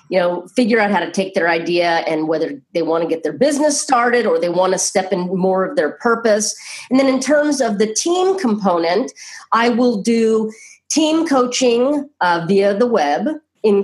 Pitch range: 190-235 Hz